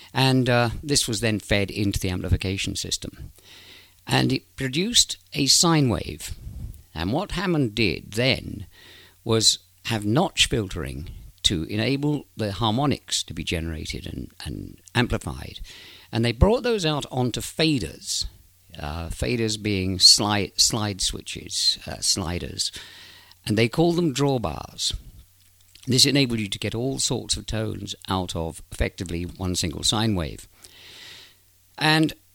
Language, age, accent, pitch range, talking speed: English, 50-69, British, 90-120 Hz, 135 wpm